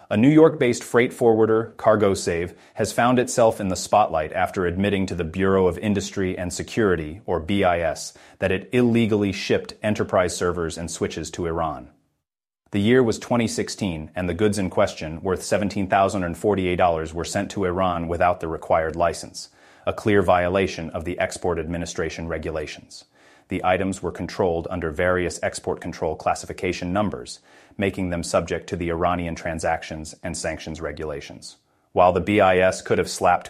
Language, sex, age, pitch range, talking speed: English, male, 30-49, 85-100 Hz, 155 wpm